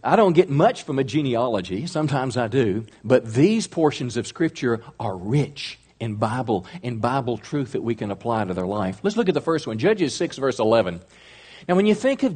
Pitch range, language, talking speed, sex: 125-170 Hz, English, 215 wpm, male